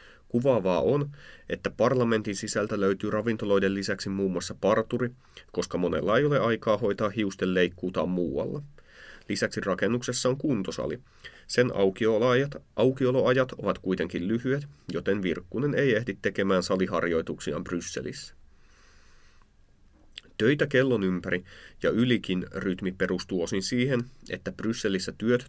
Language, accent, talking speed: Finnish, native, 115 wpm